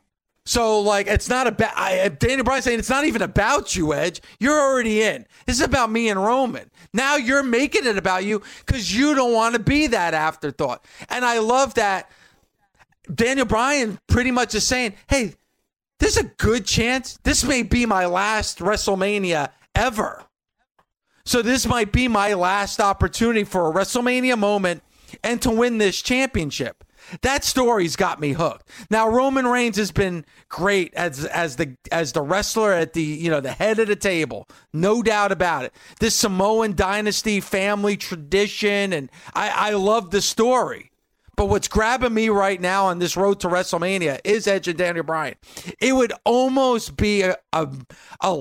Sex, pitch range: male, 175-235 Hz